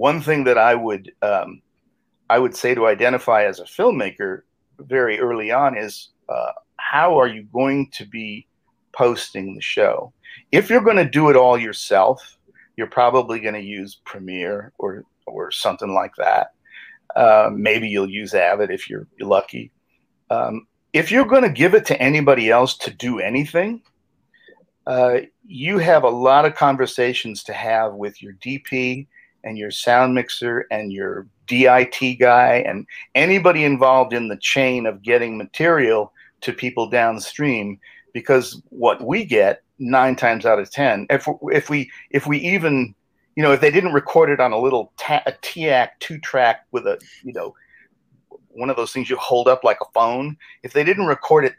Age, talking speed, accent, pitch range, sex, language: 50-69, 170 wpm, American, 115-150 Hz, male, English